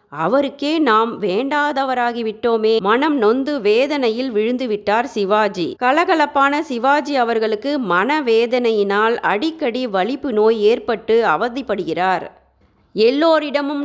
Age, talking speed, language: 30-49, 80 wpm, Tamil